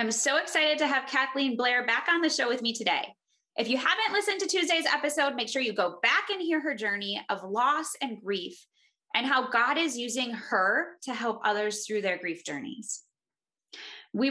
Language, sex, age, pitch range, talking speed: English, female, 20-39, 200-275 Hz, 200 wpm